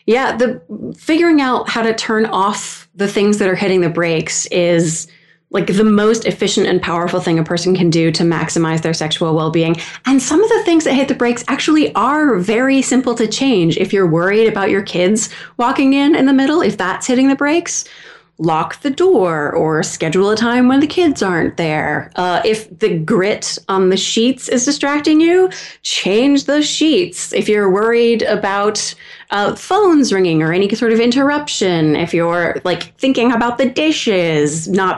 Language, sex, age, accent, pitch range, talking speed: English, female, 30-49, American, 170-255 Hz, 185 wpm